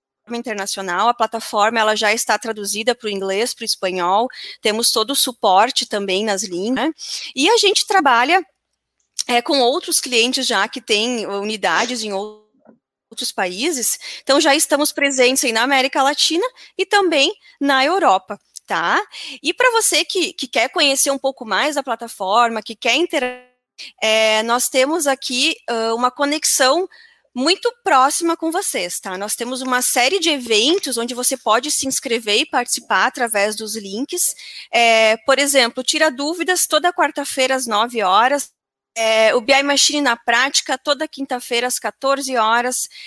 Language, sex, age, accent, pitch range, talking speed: Portuguese, female, 10-29, Brazilian, 225-285 Hz, 155 wpm